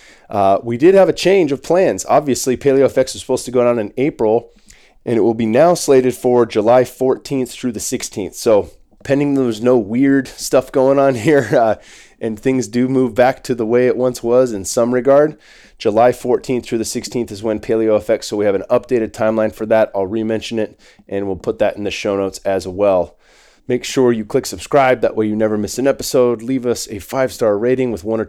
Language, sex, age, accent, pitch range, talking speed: English, male, 20-39, American, 105-125 Hz, 220 wpm